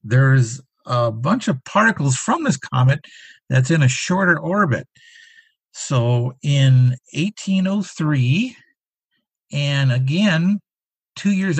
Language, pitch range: English, 120-170 Hz